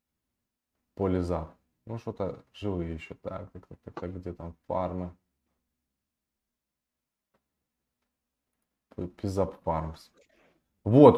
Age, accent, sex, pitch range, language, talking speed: 20-39, native, male, 90-115 Hz, Russian, 85 wpm